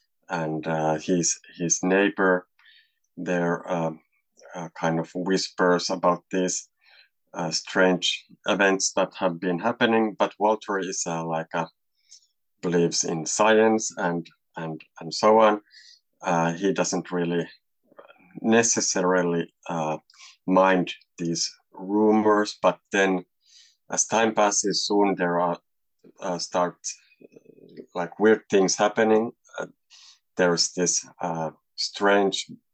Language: English